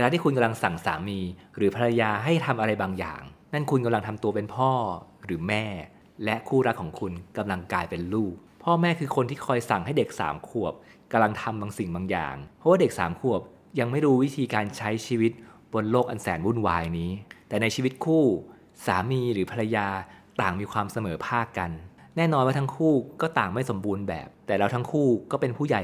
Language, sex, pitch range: Thai, male, 95-125 Hz